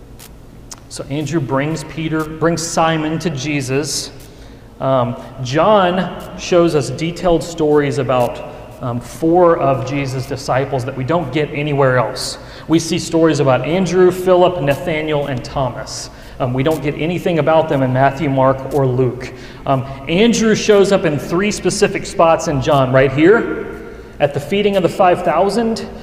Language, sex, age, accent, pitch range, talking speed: English, male, 40-59, American, 130-165 Hz, 150 wpm